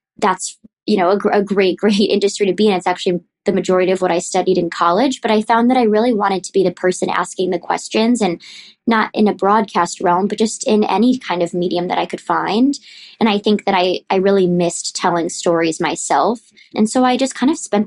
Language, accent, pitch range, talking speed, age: English, American, 180-215 Hz, 235 wpm, 20-39